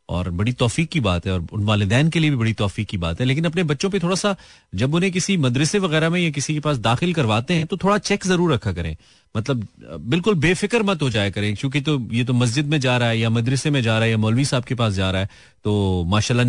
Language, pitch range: Hindi, 110-155 Hz